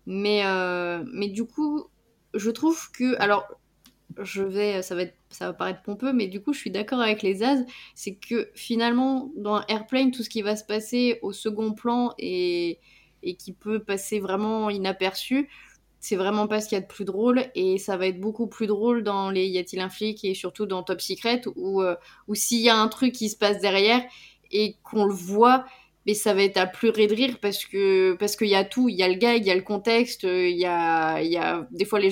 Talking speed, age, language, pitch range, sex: 235 wpm, 20-39, French, 195-230 Hz, female